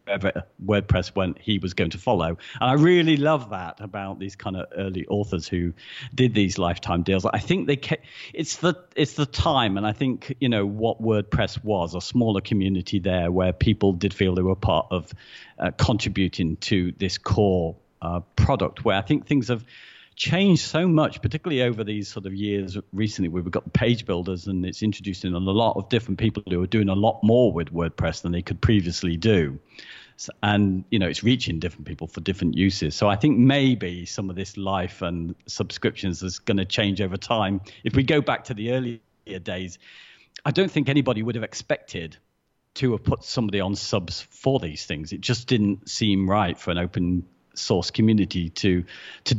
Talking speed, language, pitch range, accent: 195 wpm, English, 90-120 Hz, British